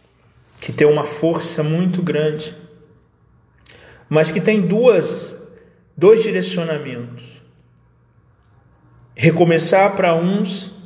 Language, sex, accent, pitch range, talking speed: Portuguese, male, Brazilian, 155-180 Hz, 75 wpm